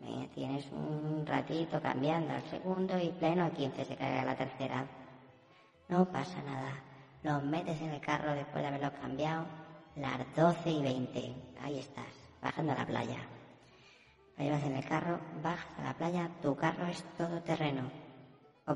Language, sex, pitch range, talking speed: Spanish, male, 130-150 Hz, 165 wpm